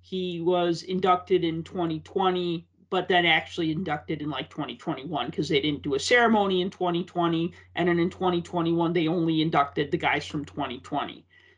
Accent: American